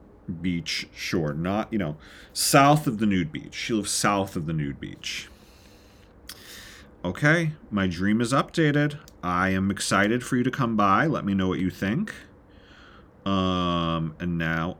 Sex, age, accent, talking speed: male, 30-49, American, 160 wpm